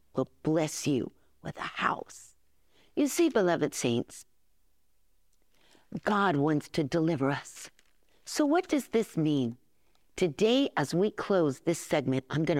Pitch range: 155-230 Hz